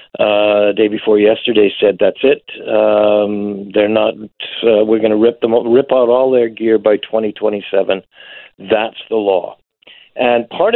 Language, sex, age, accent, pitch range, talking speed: English, male, 60-79, American, 110-135 Hz, 160 wpm